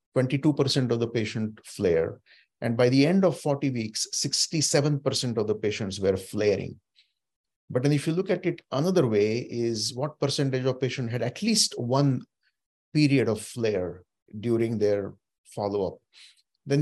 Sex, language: male, English